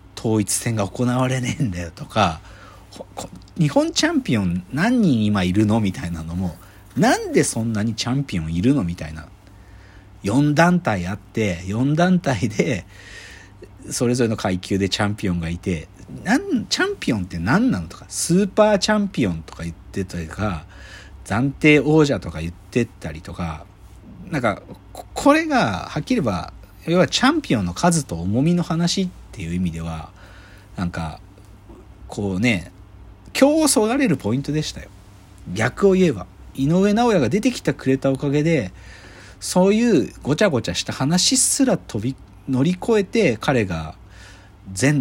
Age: 50-69